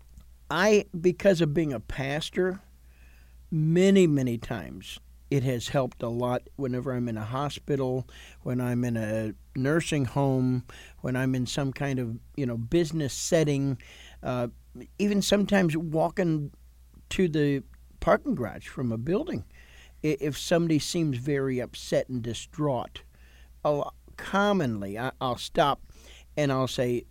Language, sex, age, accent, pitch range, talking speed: English, male, 50-69, American, 110-160 Hz, 130 wpm